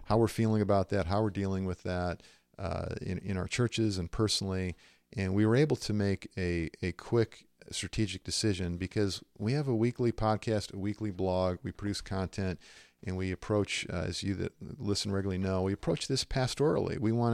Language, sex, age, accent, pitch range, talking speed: English, male, 50-69, American, 90-115 Hz, 195 wpm